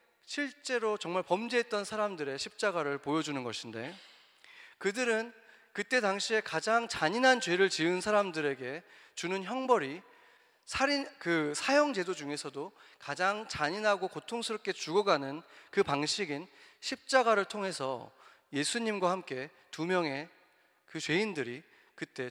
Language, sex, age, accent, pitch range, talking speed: English, male, 40-59, Korean, 150-225 Hz, 100 wpm